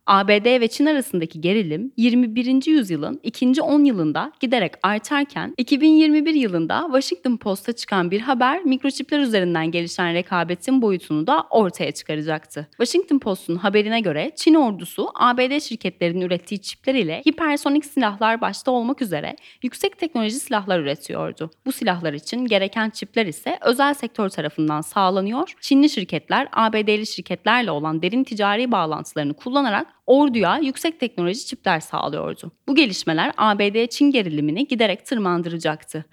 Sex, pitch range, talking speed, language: female, 180-270 Hz, 130 wpm, Turkish